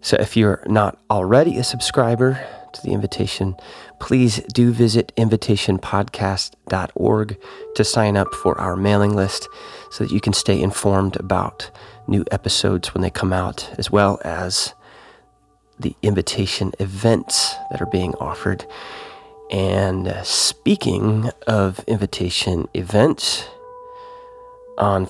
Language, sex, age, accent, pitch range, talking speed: English, male, 30-49, American, 95-115 Hz, 120 wpm